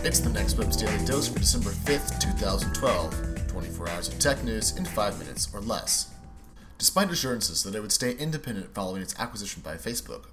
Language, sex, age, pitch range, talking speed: English, male, 30-49, 90-110 Hz, 185 wpm